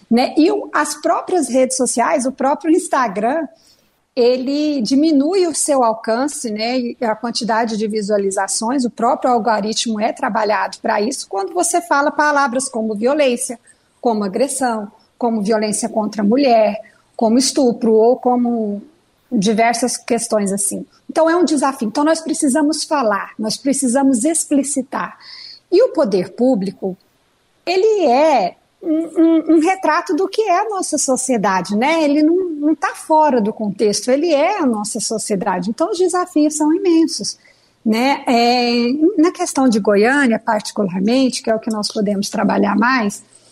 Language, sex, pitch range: Portuguese, female, 220-295 Hz